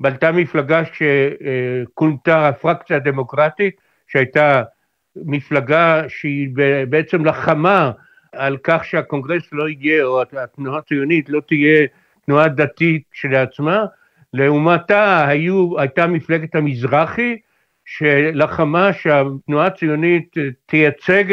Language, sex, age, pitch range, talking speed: Hebrew, male, 60-79, 145-185 Hz, 90 wpm